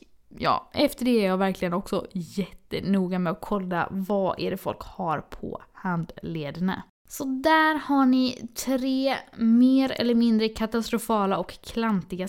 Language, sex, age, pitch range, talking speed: Swedish, female, 20-39, 200-265 Hz, 135 wpm